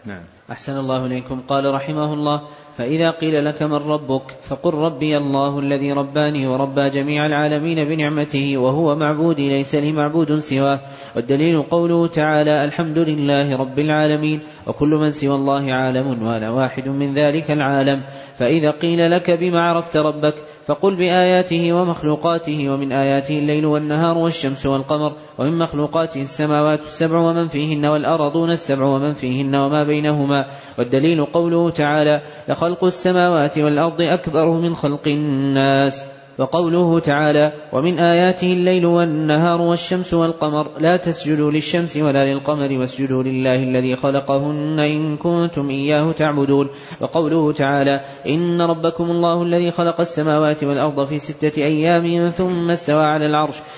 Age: 20-39